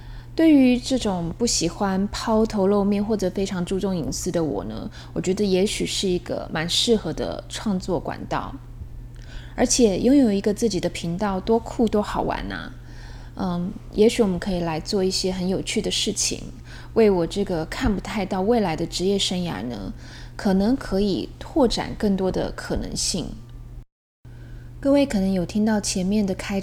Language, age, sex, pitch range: Chinese, 20-39, female, 160-210 Hz